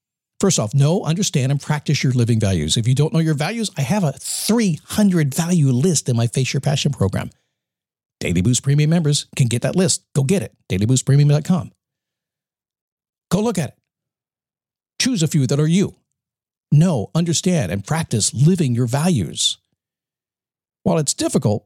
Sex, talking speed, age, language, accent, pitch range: male, 160 wpm, 50-69, English, American, 130-175 Hz